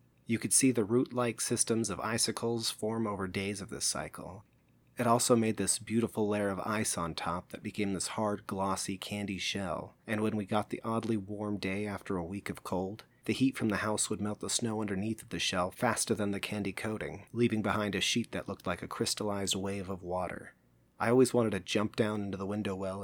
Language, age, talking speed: English, 30-49, 220 wpm